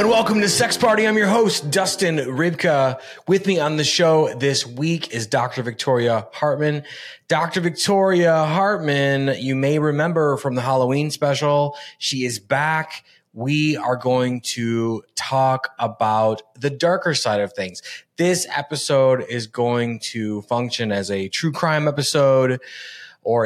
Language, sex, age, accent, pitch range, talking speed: English, male, 20-39, American, 115-150 Hz, 145 wpm